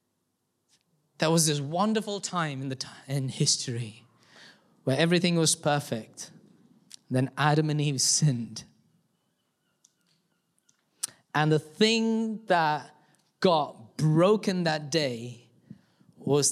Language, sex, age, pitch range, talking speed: English, male, 20-39, 135-185 Hz, 95 wpm